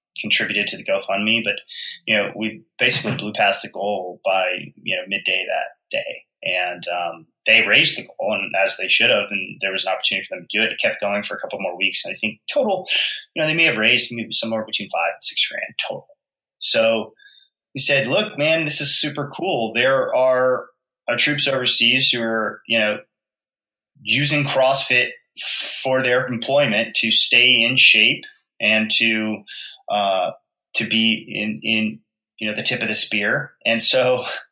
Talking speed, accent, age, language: 190 wpm, American, 20-39, English